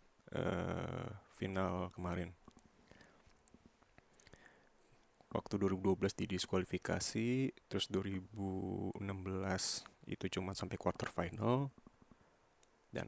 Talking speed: 65 wpm